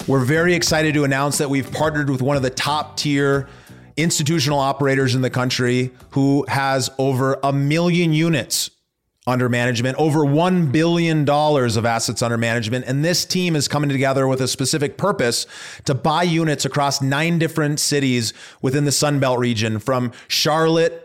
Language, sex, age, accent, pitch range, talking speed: English, male, 30-49, American, 135-160 Hz, 165 wpm